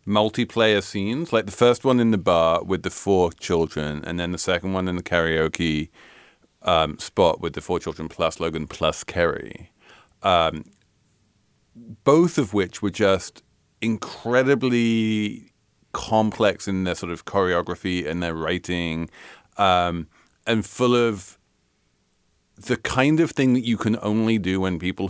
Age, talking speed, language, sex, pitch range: 30-49, 150 wpm, English, male, 85-115 Hz